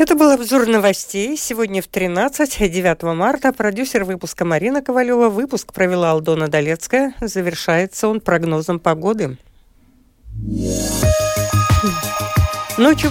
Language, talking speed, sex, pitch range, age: Russian, 100 wpm, female, 170-240 Hz, 50-69